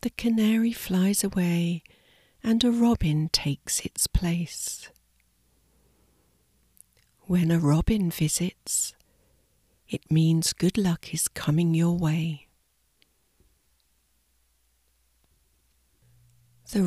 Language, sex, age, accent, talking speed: English, female, 50-69, British, 80 wpm